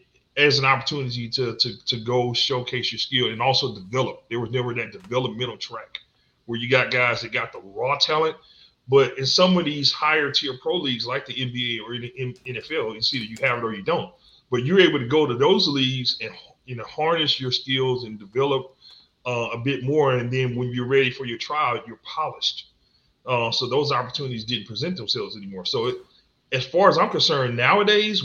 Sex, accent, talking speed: male, American, 205 wpm